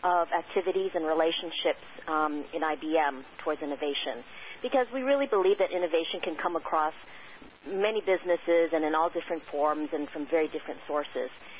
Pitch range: 155-200 Hz